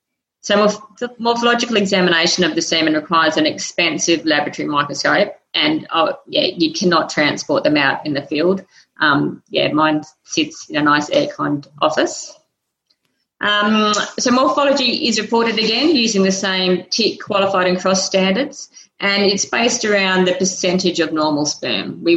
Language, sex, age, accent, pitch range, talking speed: English, female, 30-49, Australian, 170-215 Hz, 150 wpm